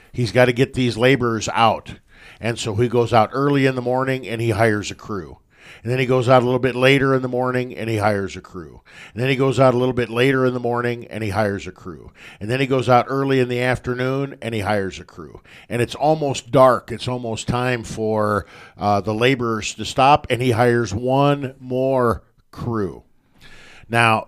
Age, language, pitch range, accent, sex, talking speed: 50-69, English, 110-130 Hz, American, male, 220 wpm